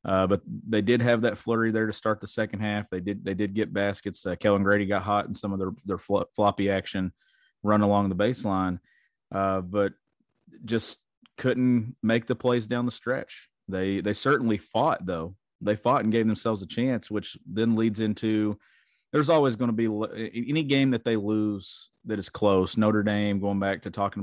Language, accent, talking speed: English, American, 205 wpm